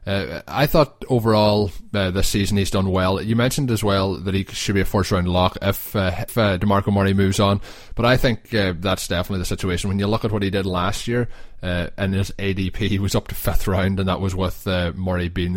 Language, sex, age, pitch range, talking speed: English, male, 20-39, 95-105 Hz, 245 wpm